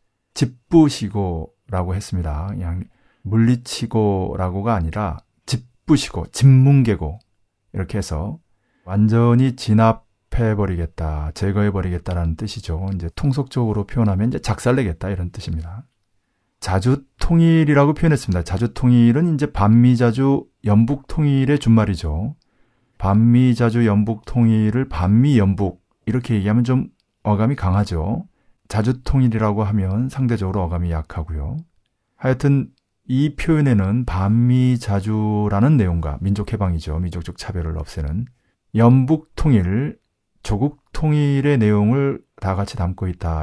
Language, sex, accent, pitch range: Korean, male, native, 95-120 Hz